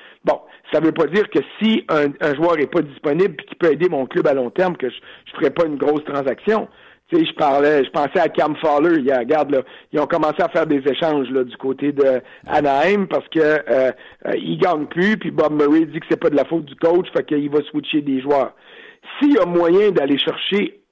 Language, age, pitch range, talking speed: French, 60-79, 150-215 Hz, 245 wpm